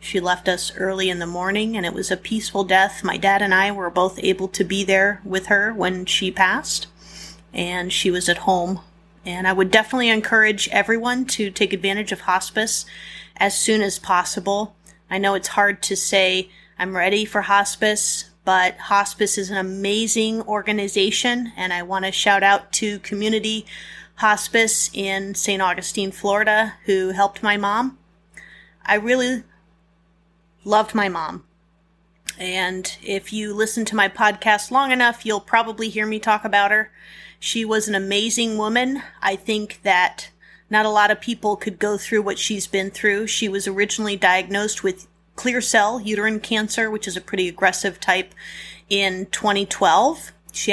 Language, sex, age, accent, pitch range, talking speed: English, female, 30-49, American, 190-215 Hz, 165 wpm